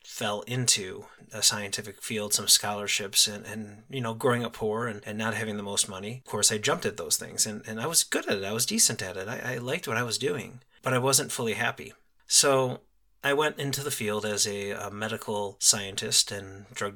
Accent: American